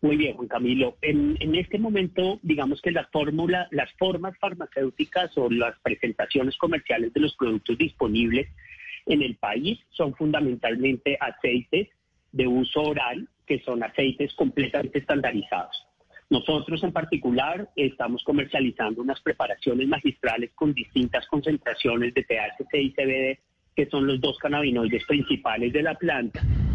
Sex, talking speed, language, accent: male, 135 wpm, Spanish, Colombian